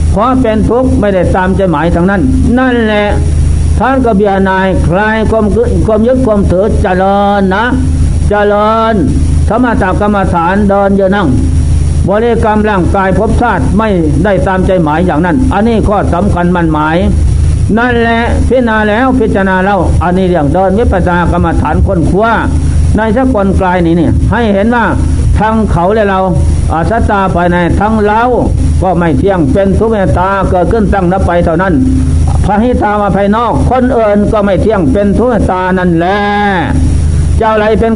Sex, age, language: male, 60-79, Thai